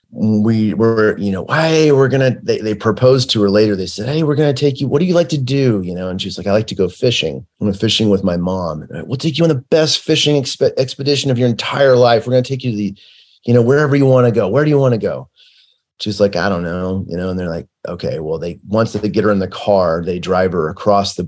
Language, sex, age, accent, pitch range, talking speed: English, male, 30-49, American, 95-125 Hz, 290 wpm